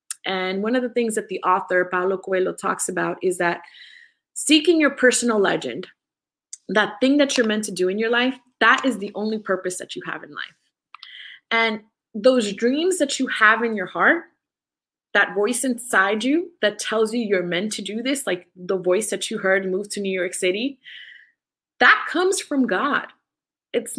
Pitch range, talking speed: 190-245 Hz, 190 wpm